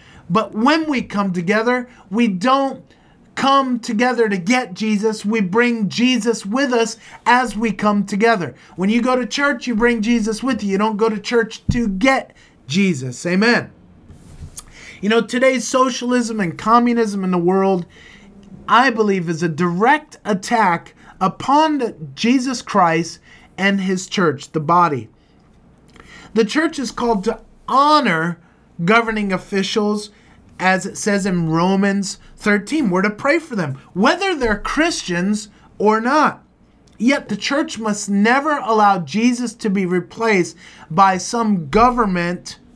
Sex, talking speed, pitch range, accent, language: male, 140 wpm, 185-240 Hz, American, English